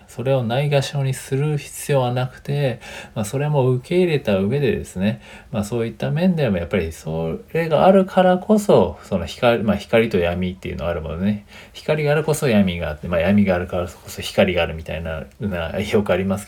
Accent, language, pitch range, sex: native, Japanese, 95-135 Hz, male